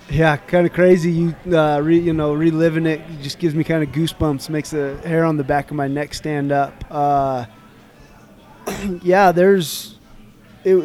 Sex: male